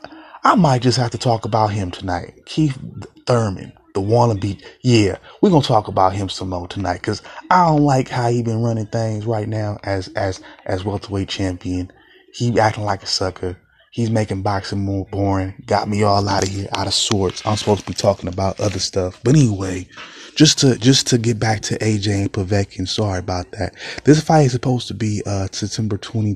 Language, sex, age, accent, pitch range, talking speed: English, male, 20-39, American, 95-120 Hz, 205 wpm